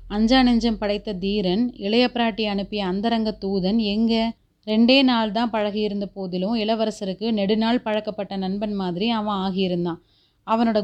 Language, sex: Tamil, female